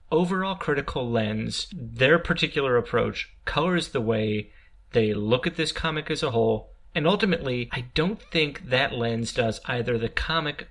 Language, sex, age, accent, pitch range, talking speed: English, male, 30-49, American, 115-155 Hz, 155 wpm